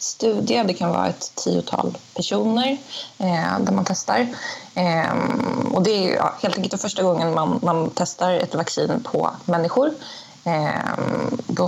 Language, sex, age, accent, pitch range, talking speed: Swedish, female, 20-39, native, 170-215 Hz, 125 wpm